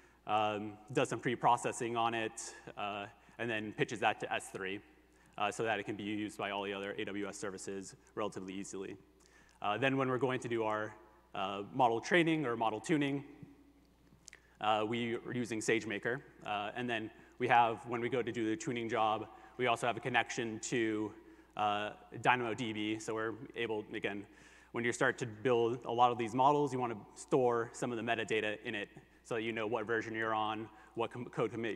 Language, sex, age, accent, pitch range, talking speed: English, male, 30-49, American, 110-125 Hz, 195 wpm